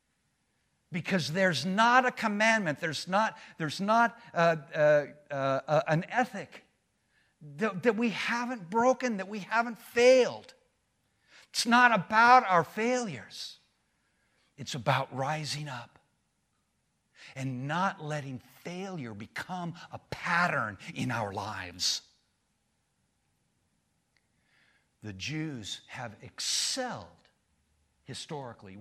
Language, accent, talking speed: English, American, 100 wpm